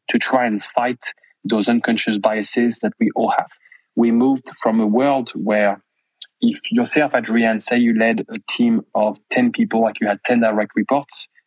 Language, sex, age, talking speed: English, male, 20-39, 180 wpm